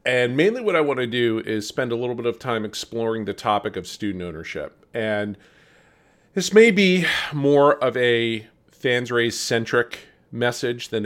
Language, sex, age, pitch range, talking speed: English, male, 40-59, 100-120 Hz, 175 wpm